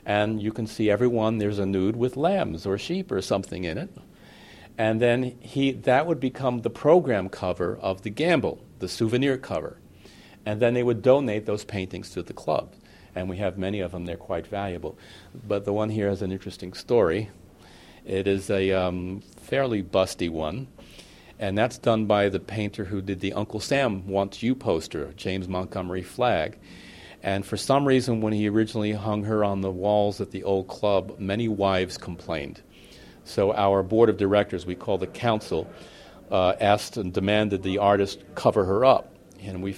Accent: American